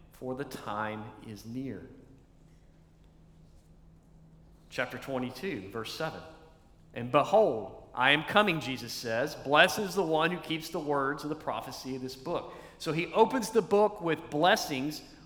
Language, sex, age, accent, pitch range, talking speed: English, male, 40-59, American, 120-160 Hz, 145 wpm